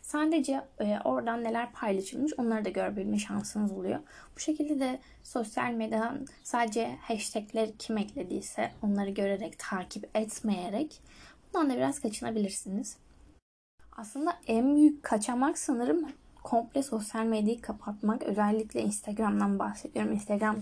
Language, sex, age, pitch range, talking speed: Turkish, female, 10-29, 215-275 Hz, 115 wpm